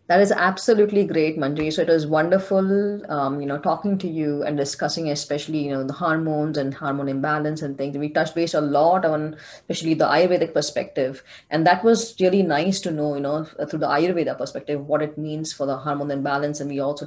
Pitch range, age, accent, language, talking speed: 145-175 Hz, 30-49, Indian, English, 210 wpm